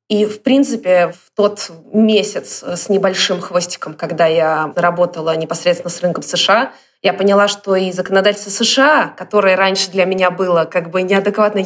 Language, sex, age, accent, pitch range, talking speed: Russian, female, 20-39, native, 175-215 Hz, 155 wpm